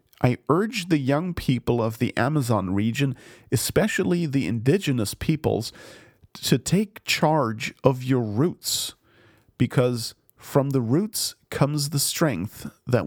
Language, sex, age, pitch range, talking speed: English, male, 40-59, 120-160 Hz, 125 wpm